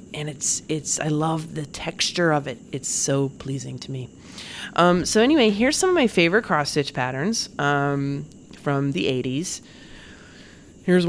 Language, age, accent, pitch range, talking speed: English, 30-49, American, 130-160 Hz, 155 wpm